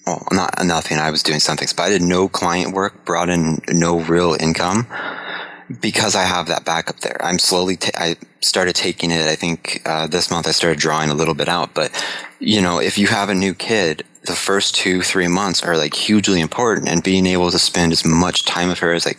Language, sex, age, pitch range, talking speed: English, male, 20-39, 80-95 Hz, 230 wpm